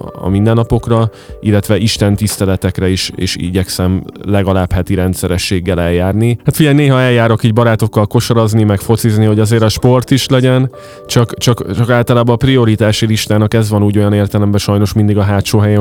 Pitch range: 95-110 Hz